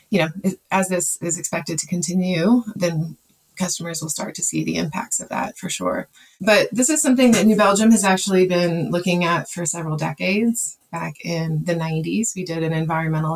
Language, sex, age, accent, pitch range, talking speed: English, female, 20-39, American, 160-185 Hz, 195 wpm